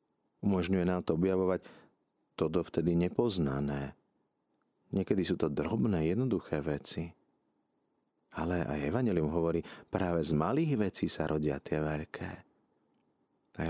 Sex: male